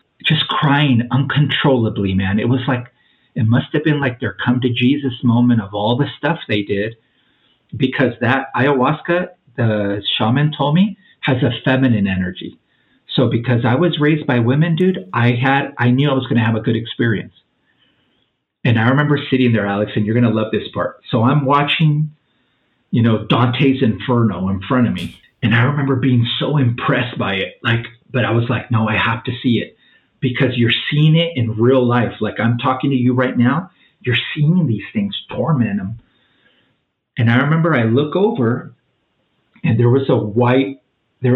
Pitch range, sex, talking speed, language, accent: 115-145 Hz, male, 185 wpm, English, American